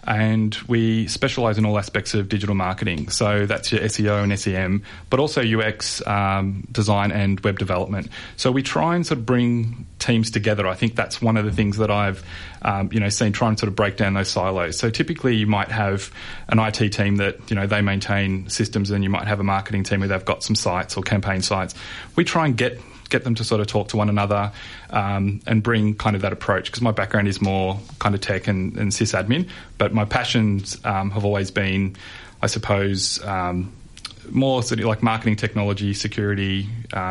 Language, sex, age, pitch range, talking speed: English, male, 30-49, 100-115 Hz, 210 wpm